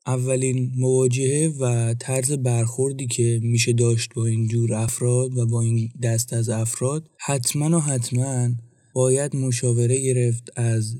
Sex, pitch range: male, 120-130 Hz